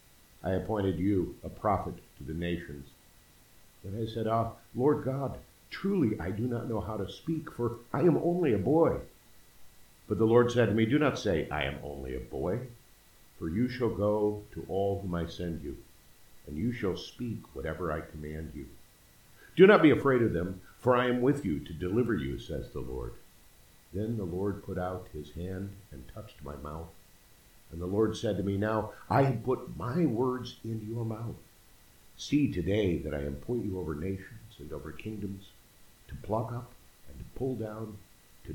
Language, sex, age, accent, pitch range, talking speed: English, male, 50-69, American, 85-115 Hz, 190 wpm